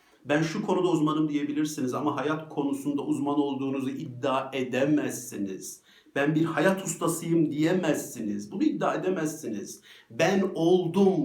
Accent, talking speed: native, 115 wpm